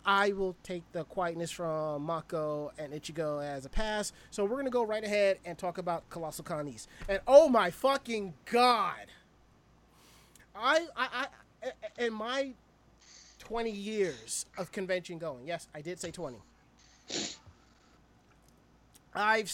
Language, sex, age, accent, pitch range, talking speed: English, male, 30-49, American, 170-225 Hz, 140 wpm